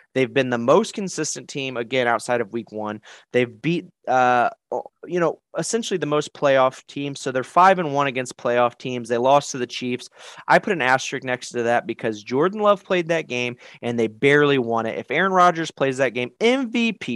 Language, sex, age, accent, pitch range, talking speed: English, male, 30-49, American, 125-210 Hz, 205 wpm